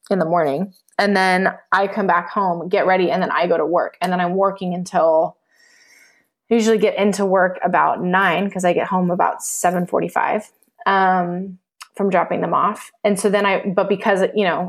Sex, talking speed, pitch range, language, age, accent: female, 190 wpm, 175-210 Hz, English, 20-39, American